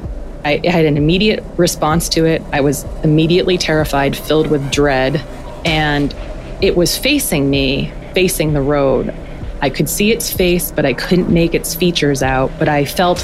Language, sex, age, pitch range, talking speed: English, female, 20-39, 140-170 Hz, 170 wpm